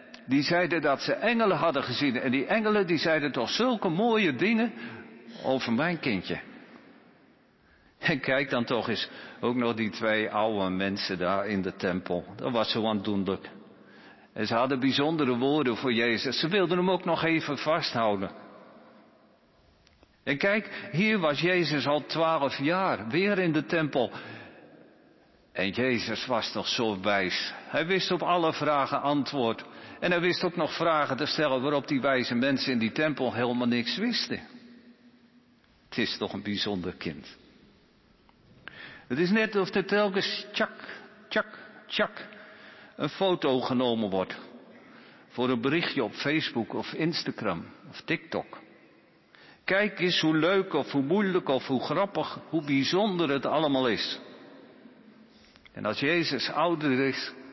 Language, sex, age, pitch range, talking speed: Dutch, male, 50-69, 115-180 Hz, 150 wpm